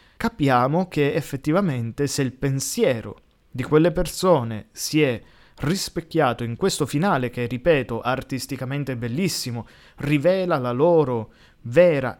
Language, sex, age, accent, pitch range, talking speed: Italian, male, 20-39, native, 115-150 Hz, 115 wpm